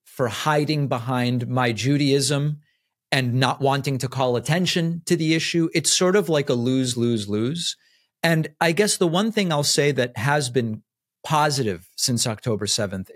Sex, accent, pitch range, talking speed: male, American, 120-155 Hz, 170 wpm